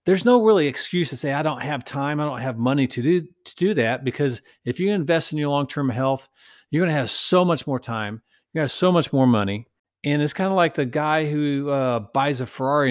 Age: 50-69